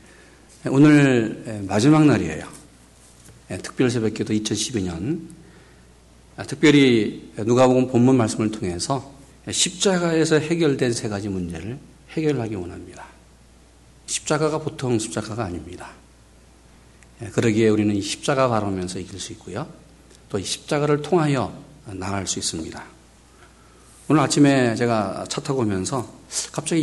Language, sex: Korean, male